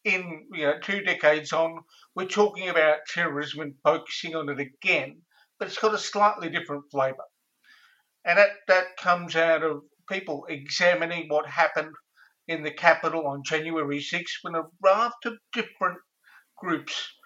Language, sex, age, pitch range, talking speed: English, male, 50-69, 150-185 Hz, 155 wpm